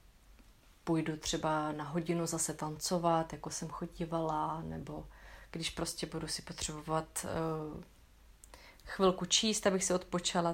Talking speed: 120 wpm